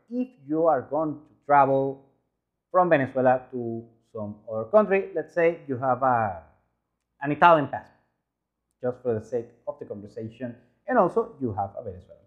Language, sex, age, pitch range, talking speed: English, male, 30-49, 110-160 Hz, 160 wpm